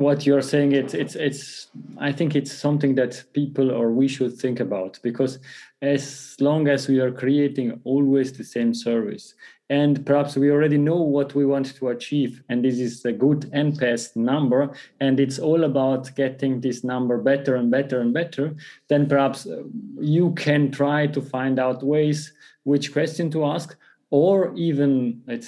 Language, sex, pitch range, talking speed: English, male, 130-150 Hz, 175 wpm